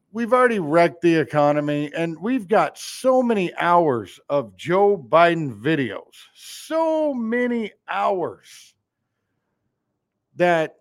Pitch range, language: 155-230 Hz, English